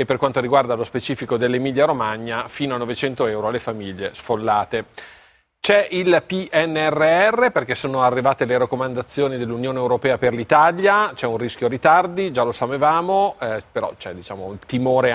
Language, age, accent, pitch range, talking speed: Italian, 40-59, native, 120-145 Hz, 145 wpm